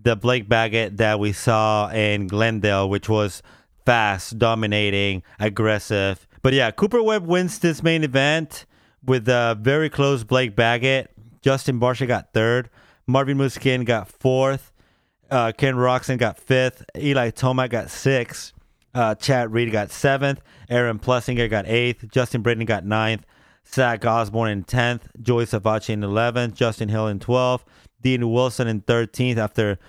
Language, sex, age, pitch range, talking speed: English, male, 30-49, 105-125 Hz, 150 wpm